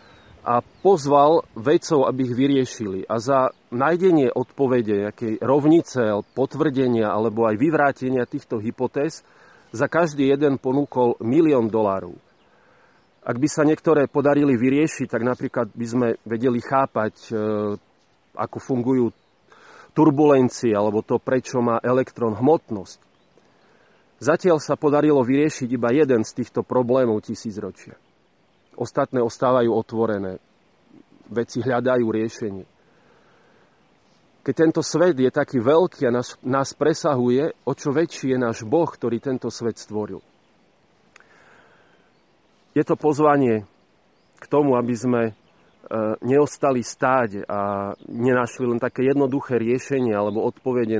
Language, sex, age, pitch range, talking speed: Slovak, male, 40-59, 115-140 Hz, 115 wpm